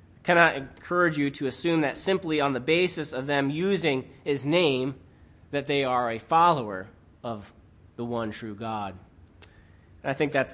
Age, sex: 30-49, male